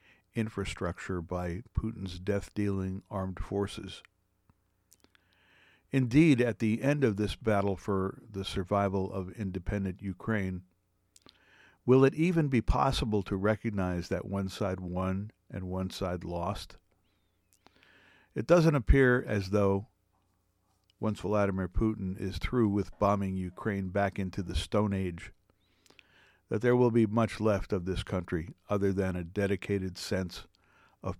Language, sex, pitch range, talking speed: English, male, 90-105 Hz, 130 wpm